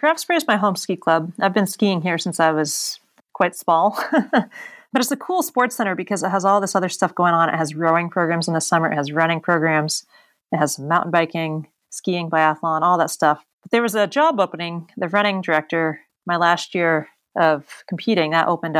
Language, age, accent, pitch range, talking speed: English, 30-49, American, 165-200 Hz, 210 wpm